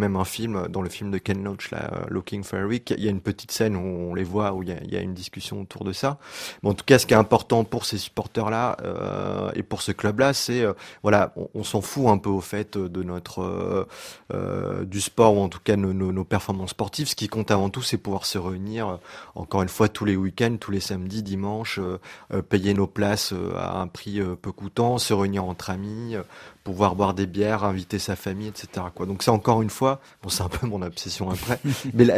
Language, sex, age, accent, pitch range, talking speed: French, male, 30-49, French, 95-110 Hz, 250 wpm